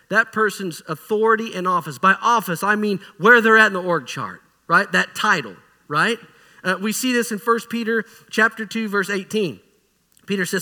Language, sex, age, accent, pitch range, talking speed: English, male, 40-59, American, 170-225 Hz, 185 wpm